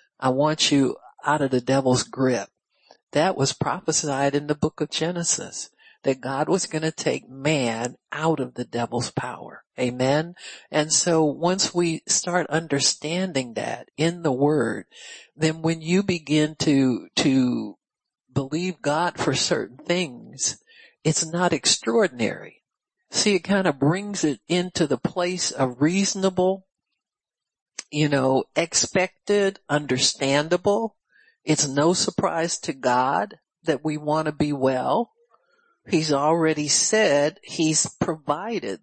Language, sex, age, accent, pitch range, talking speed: English, male, 60-79, American, 145-185 Hz, 130 wpm